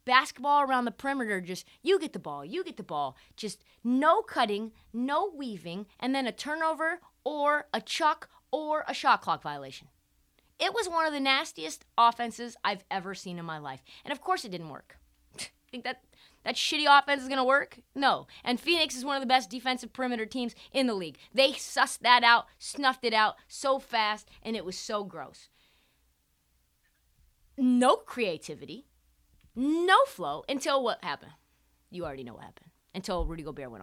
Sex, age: female, 20-39